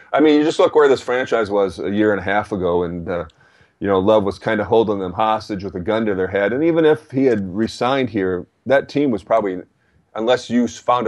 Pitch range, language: 90-105 Hz, English